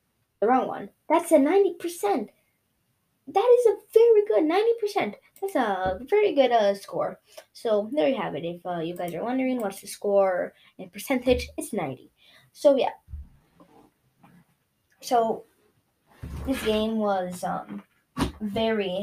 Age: 10-29